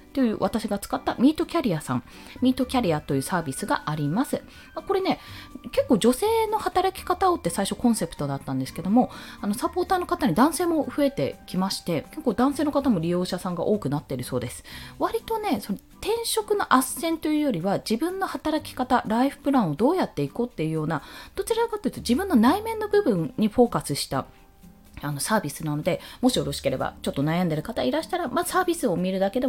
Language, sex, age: Japanese, female, 20-39